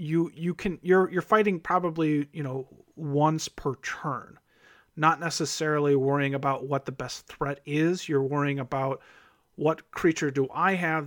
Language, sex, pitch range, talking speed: English, male, 135-165 Hz, 155 wpm